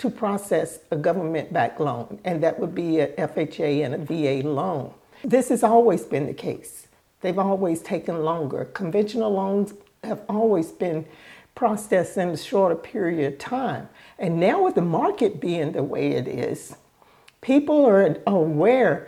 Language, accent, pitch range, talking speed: English, American, 175-235 Hz, 155 wpm